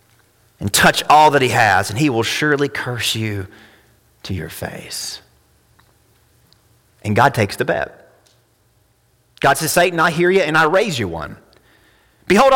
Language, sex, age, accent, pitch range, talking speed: English, male, 30-49, American, 110-155 Hz, 155 wpm